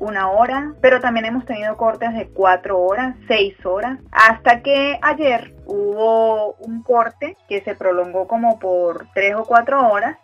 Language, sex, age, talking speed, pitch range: Spanish, female, 30-49, 160 wpm, 195-245 Hz